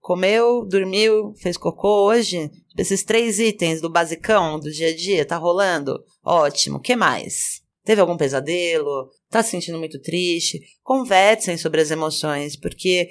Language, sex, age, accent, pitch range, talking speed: Portuguese, female, 20-39, Brazilian, 165-210 Hz, 145 wpm